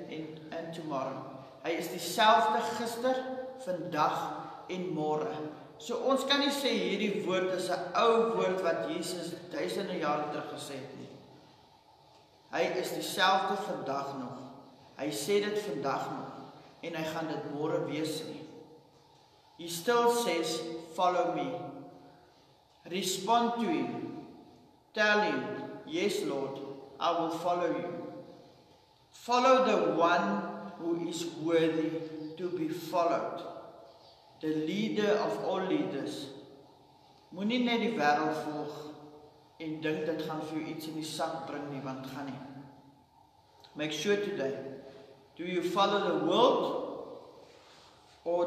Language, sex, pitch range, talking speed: English, male, 145-185 Hz, 125 wpm